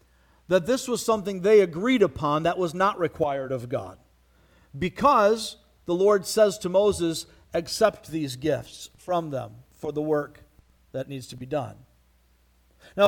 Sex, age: male, 50-69